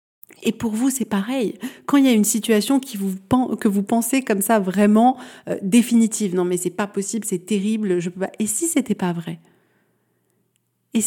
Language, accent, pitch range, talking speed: French, French, 180-230 Hz, 200 wpm